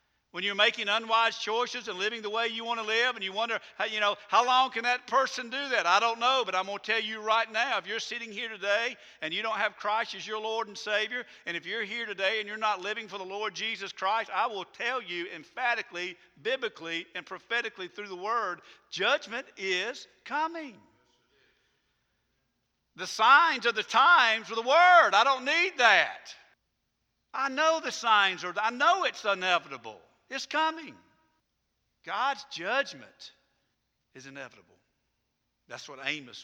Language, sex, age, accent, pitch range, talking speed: English, male, 50-69, American, 200-240 Hz, 180 wpm